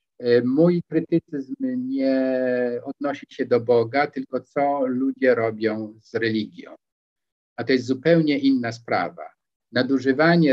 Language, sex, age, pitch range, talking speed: Polish, male, 50-69, 115-130 Hz, 115 wpm